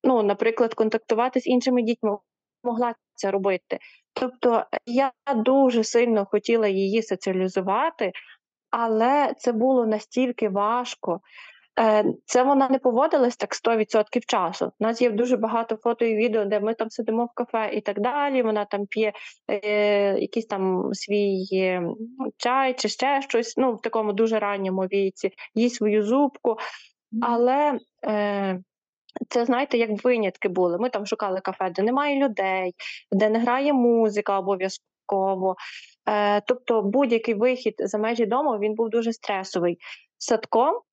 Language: Ukrainian